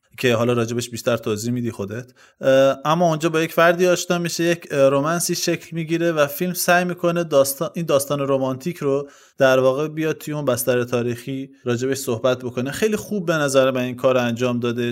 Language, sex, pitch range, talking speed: Persian, male, 125-150 Hz, 185 wpm